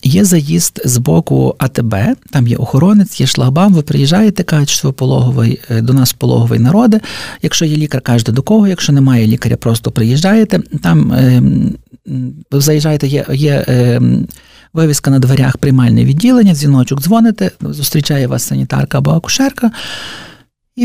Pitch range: 125-175 Hz